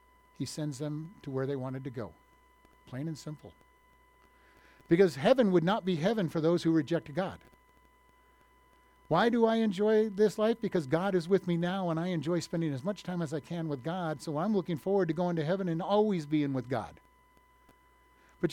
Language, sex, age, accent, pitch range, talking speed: English, male, 60-79, American, 130-195 Hz, 200 wpm